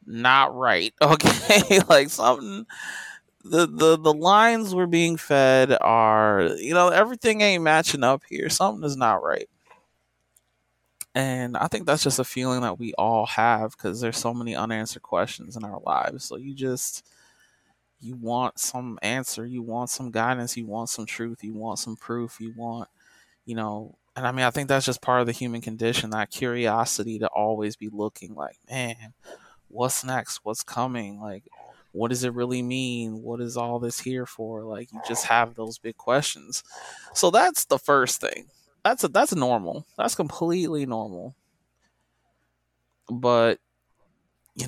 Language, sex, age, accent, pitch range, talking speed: English, male, 20-39, American, 115-140 Hz, 165 wpm